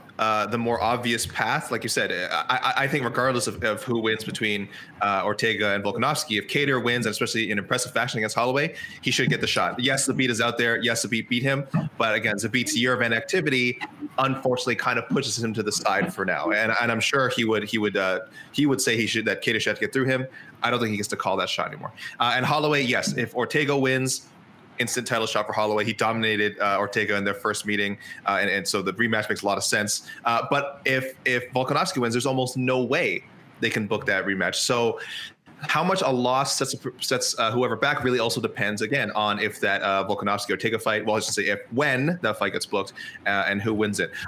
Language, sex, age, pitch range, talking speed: English, male, 20-39, 110-130 Hz, 235 wpm